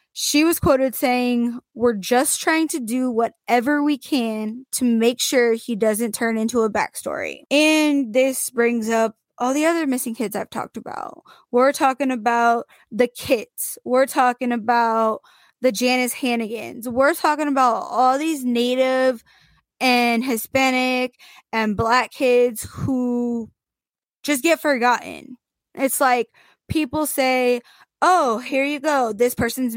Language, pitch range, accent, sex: English, 235-280 Hz, American, female